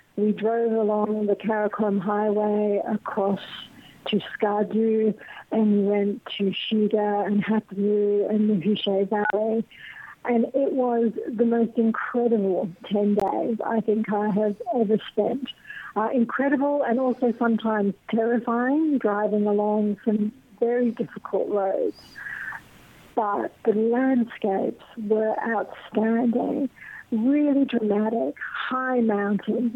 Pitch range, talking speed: 210-240 Hz, 110 wpm